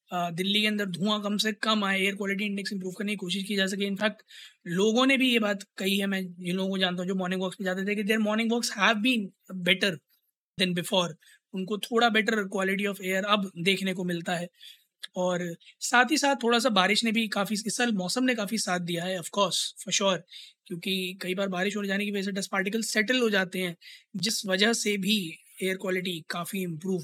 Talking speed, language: 220 wpm, Hindi